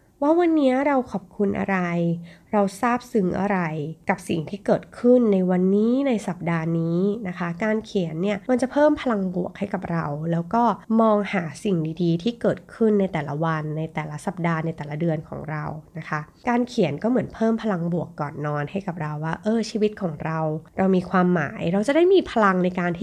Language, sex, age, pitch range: Thai, female, 20-39, 170-225 Hz